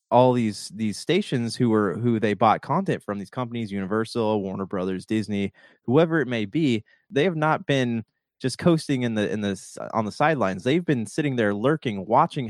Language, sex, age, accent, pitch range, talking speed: English, male, 20-39, American, 105-135 Hz, 190 wpm